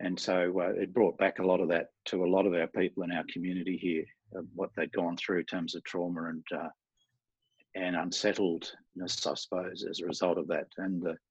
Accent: Australian